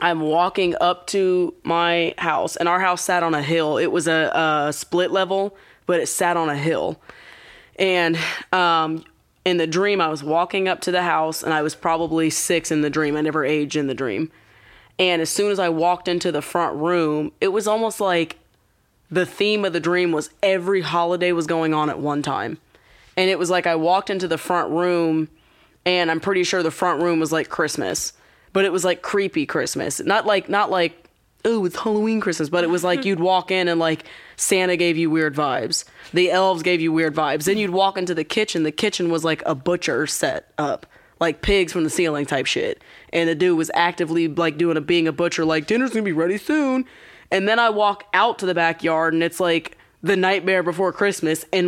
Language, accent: English, American